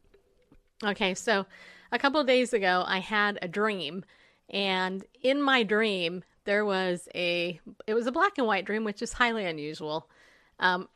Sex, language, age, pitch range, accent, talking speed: female, English, 30-49, 185-240 Hz, American, 165 wpm